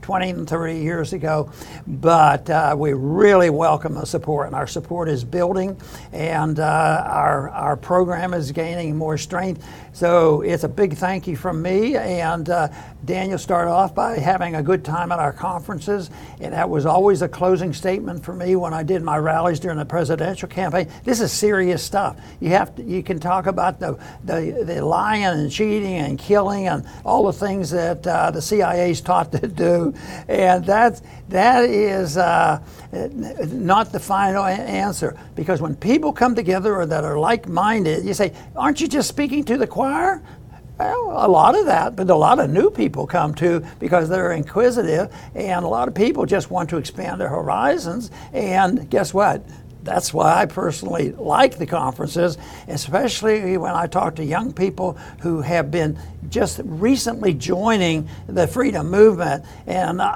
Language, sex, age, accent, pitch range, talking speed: English, male, 60-79, American, 160-195 Hz, 175 wpm